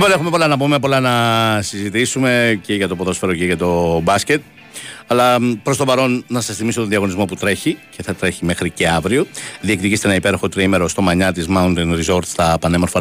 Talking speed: 195 wpm